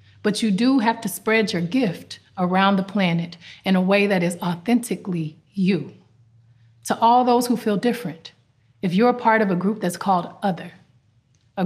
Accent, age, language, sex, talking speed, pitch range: American, 30-49, Hindi, female, 180 wpm, 155-205 Hz